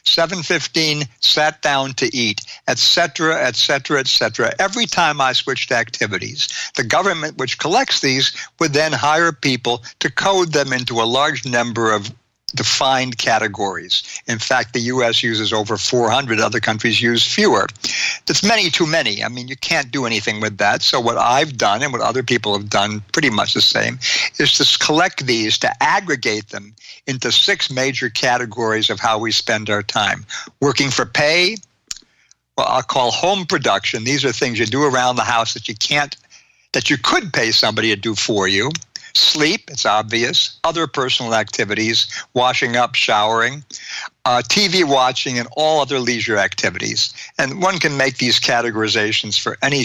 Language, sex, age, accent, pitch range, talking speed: English, male, 60-79, American, 110-140 Hz, 165 wpm